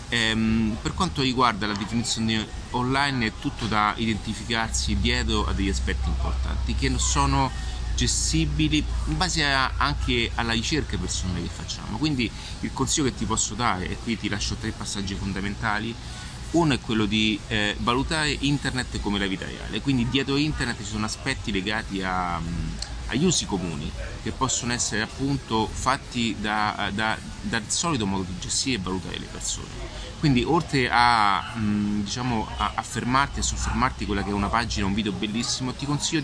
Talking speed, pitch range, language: 165 wpm, 100-125 Hz, Italian